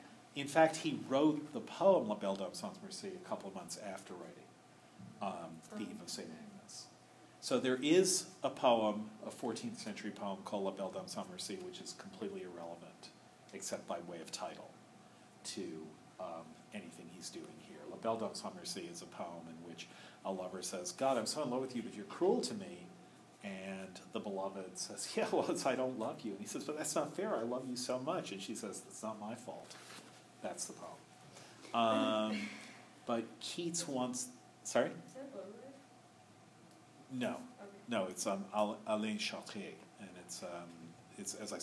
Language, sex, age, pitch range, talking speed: English, male, 40-59, 105-150 Hz, 190 wpm